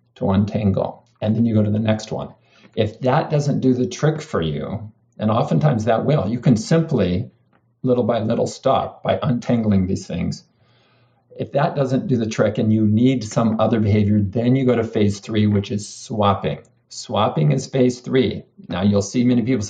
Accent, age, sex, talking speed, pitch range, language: American, 50-69, male, 190 wpm, 105-125 Hz, English